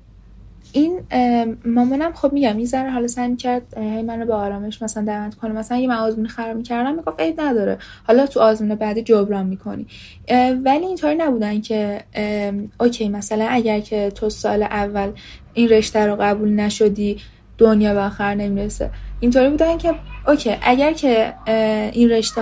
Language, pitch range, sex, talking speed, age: Persian, 210-250 Hz, female, 155 wpm, 10-29